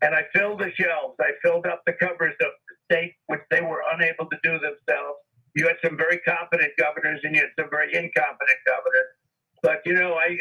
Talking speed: 215 wpm